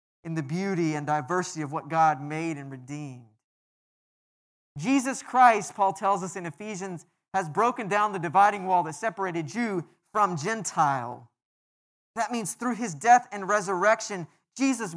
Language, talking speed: English, 150 wpm